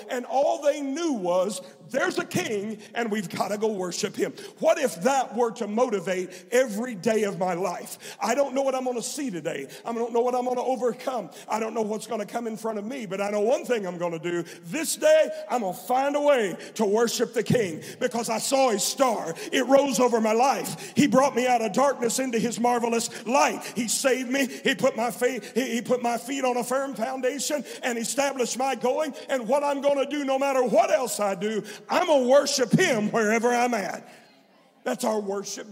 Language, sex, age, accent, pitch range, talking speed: English, male, 50-69, American, 205-260 Hz, 230 wpm